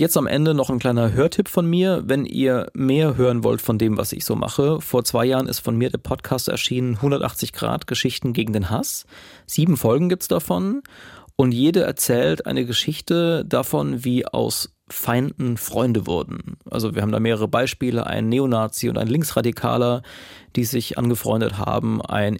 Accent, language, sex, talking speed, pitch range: German, German, male, 180 wpm, 110-135 Hz